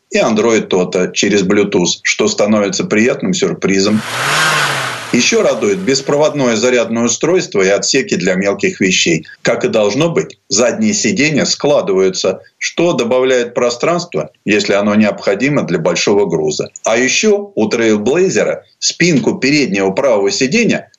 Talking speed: 125 wpm